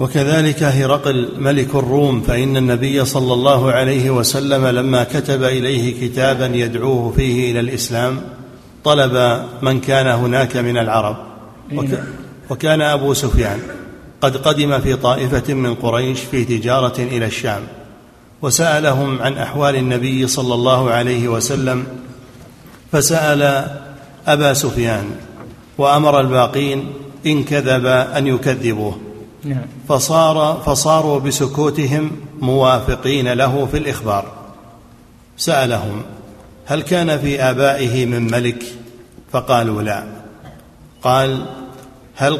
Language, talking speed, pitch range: Arabic, 100 wpm, 120-140 Hz